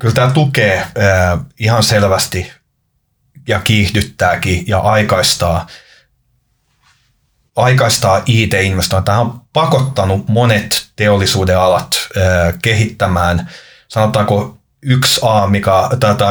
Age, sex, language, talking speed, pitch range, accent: 30-49, male, Finnish, 75 wpm, 95-115 Hz, native